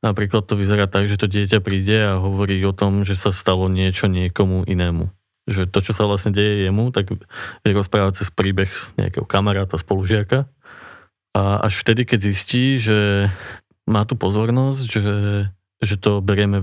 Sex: male